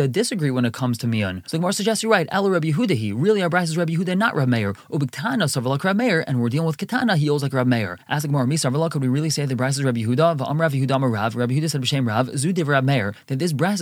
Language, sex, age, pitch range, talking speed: English, male, 20-39, 125-165 Hz, 265 wpm